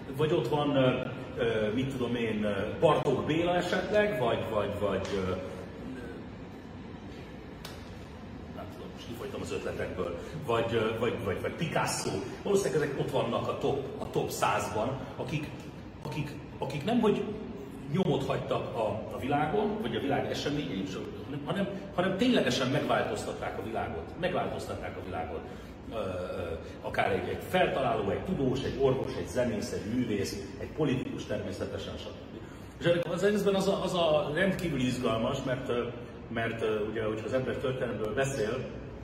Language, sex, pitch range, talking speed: Hungarian, male, 105-150 Hz, 130 wpm